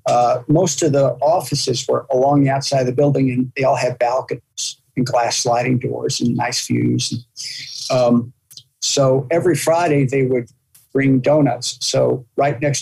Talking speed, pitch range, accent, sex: 165 wpm, 125-145 Hz, American, male